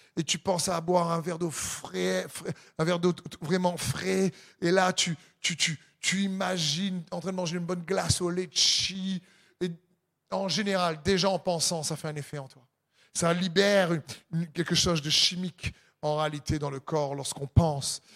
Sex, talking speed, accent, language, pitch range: male, 180 wpm, French, French, 160-190 Hz